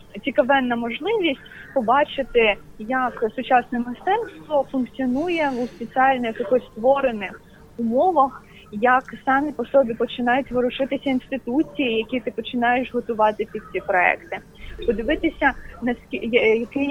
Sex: female